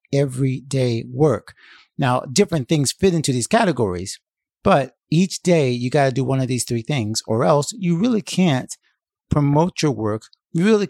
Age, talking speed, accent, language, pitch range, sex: 50-69, 170 wpm, American, English, 120-160 Hz, male